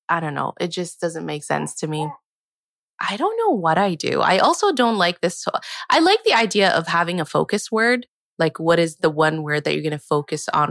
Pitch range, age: 155-195 Hz, 20-39